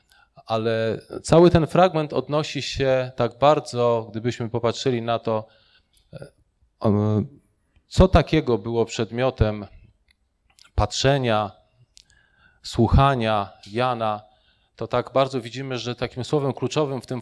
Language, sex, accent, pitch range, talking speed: Polish, male, native, 110-135 Hz, 100 wpm